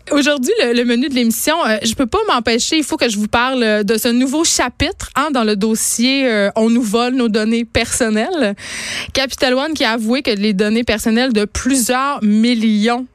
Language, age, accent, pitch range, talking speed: French, 20-39, Canadian, 195-245 Hz, 205 wpm